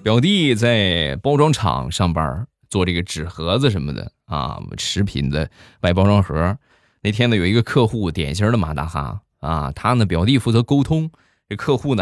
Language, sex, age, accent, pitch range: Chinese, male, 20-39, native, 90-140 Hz